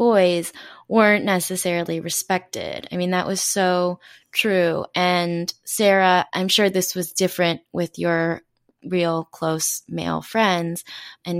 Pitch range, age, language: 165-190 Hz, 20-39, English